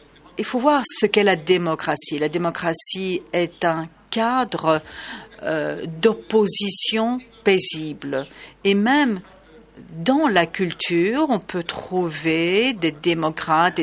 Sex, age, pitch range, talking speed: female, 50-69, 170-220 Hz, 110 wpm